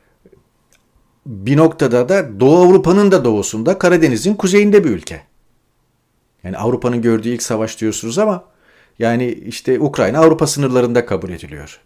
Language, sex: Turkish, male